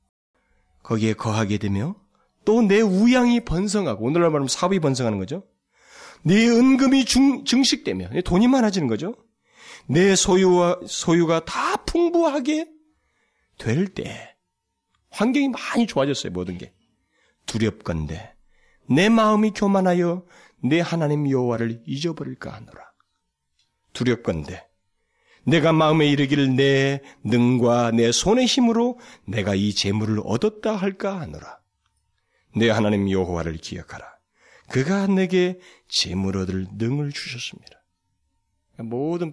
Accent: native